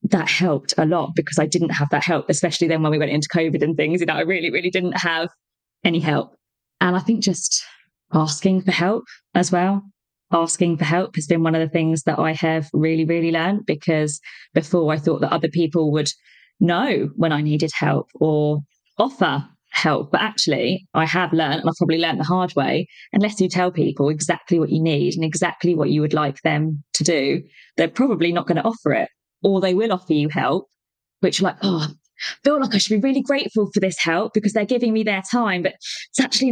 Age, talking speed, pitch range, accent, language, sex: 20-39, 220 wpm, 160-190 Hz, British, English, female